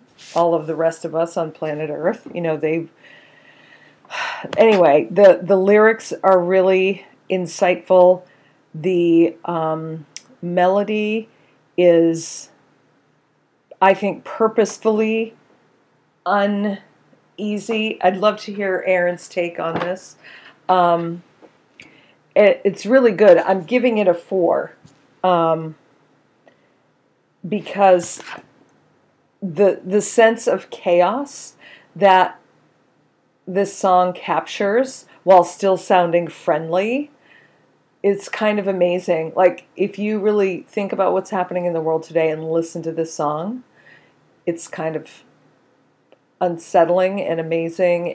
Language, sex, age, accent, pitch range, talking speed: English, female, 40-59, American, 170-200 Hz, 105 wpm